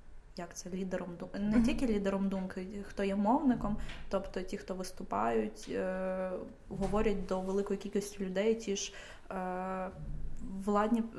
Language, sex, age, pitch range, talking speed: Ukrainian, female, 20-39, 190-210 Hz, 135 wpm